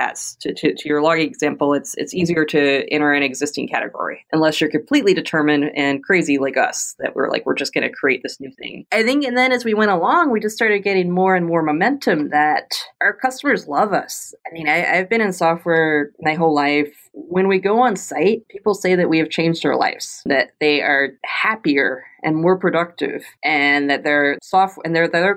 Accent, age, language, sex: American, 30-49, English, female